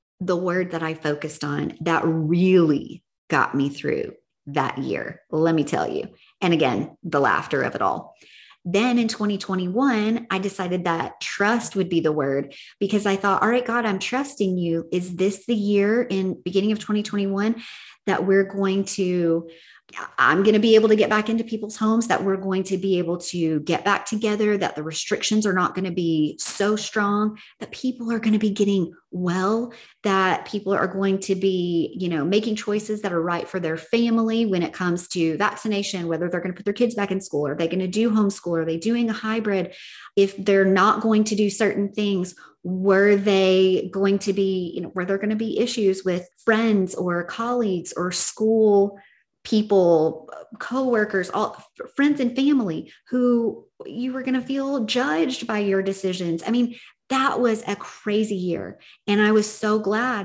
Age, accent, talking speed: 30-49, American, 190 wpm